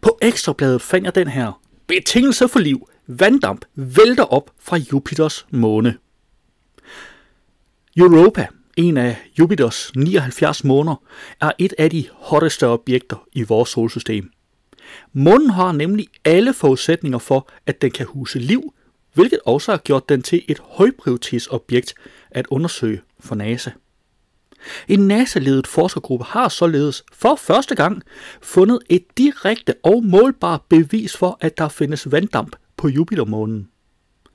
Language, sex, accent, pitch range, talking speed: Danish, male, native, 130-185 Hz, 130 wpm